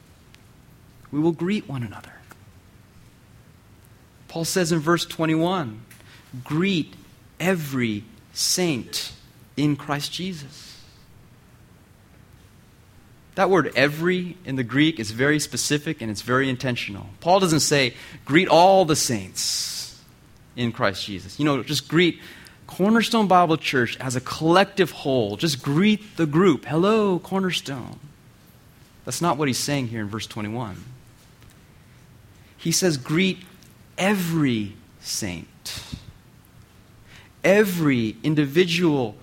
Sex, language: male, English